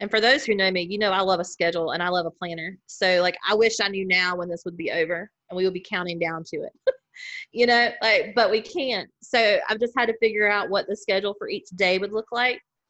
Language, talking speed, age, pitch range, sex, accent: English, 275 wpm, 30-49, 180-210 Hz, female, American